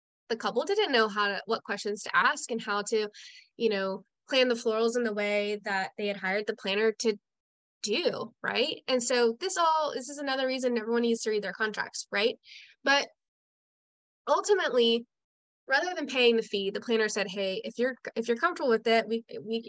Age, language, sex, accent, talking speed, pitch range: 10-29, English, female, American, 200 wpm, 210-265 Hz